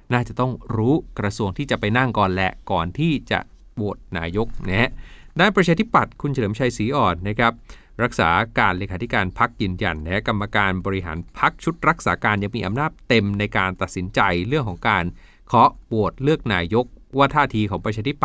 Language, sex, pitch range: Thai, male, 100-140 Hz